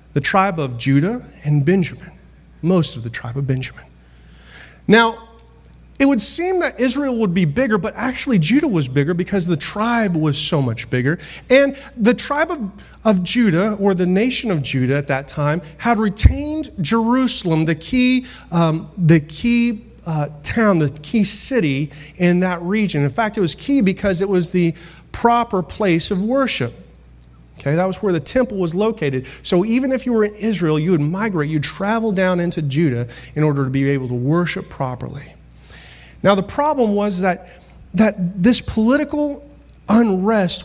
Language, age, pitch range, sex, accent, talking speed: English, 40-59, 150-220 Hz, male, American, 170 wpm